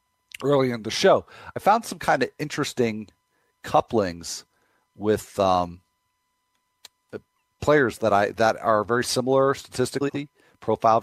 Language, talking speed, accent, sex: English, 120 wpm, American, male